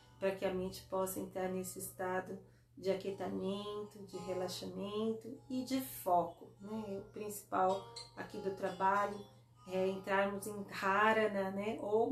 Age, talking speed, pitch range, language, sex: 30-49, 135 wpm, 175-210 Hz, Portuguese, female